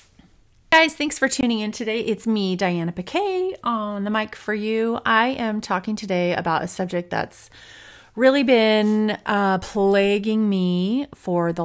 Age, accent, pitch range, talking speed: 30-49, American, 155-200 Hz, 155 wpm